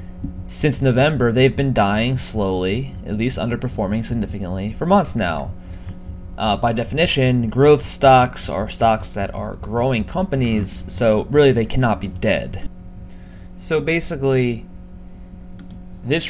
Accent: American